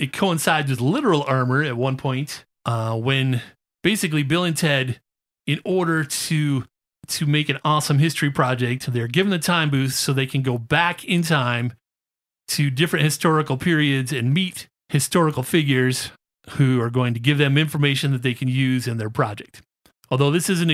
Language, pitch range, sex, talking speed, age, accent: English, 125-155 Hz, male, 175 wpm, 30-49, American